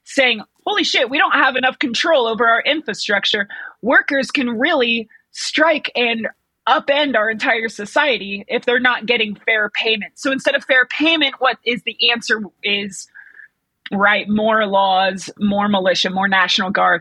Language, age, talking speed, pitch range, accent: English, 30-49, 155 wpm, 210-265 Hz, American